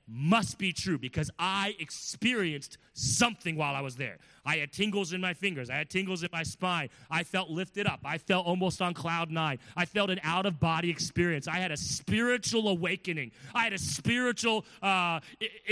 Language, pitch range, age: English, 135-190 Hz, 30-49